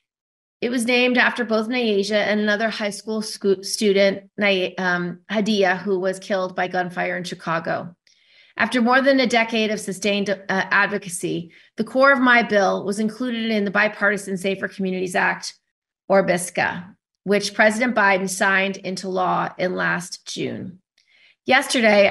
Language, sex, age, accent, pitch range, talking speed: English, female, 30-49, American, 190-225 Hz, 150 wpm